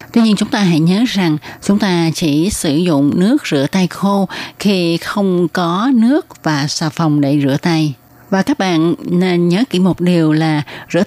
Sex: female